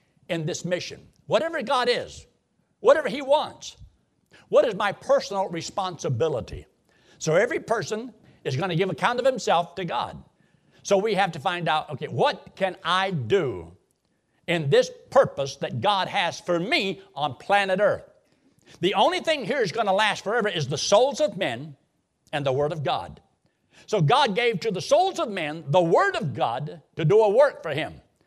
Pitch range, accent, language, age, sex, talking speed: 150-195 Hz, American, English, 60-79, male, 180 wpm